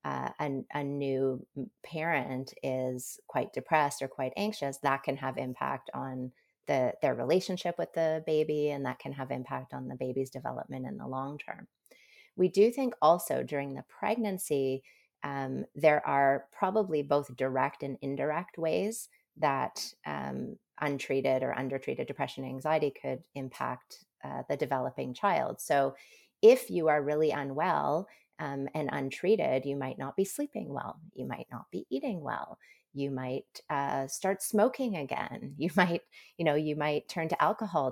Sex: female